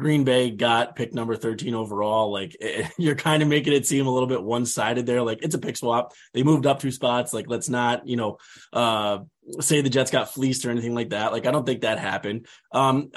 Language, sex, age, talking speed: English, male, 20-39, 230 wpm